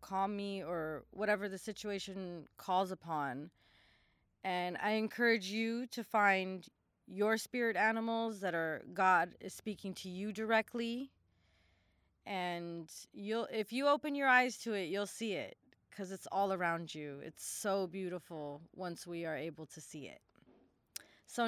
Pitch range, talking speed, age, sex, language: 185-230 Hz, 150 wpm, 30-49, female, English